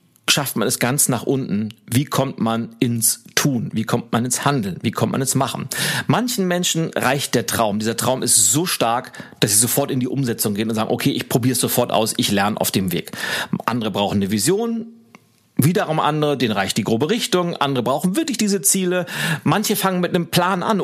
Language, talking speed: German, 210 wpm